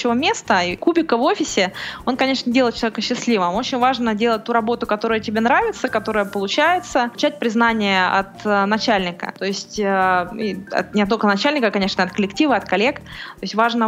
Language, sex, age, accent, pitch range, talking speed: Russian, female, 20-39, native, 195-230 Hz, 175 wpm